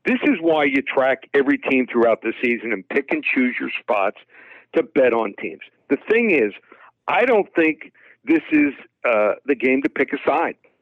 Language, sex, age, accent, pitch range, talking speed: English, male, 60-79, American, 130-155 Hz, 195 wpm